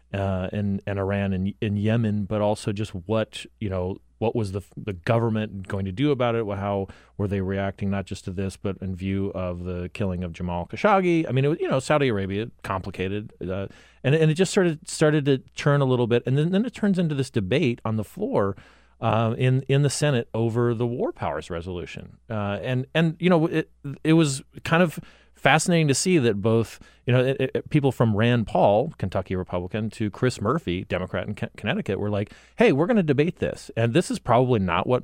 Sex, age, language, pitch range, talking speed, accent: male, 30-49, English, 100-140 Hz, 225 wpm, American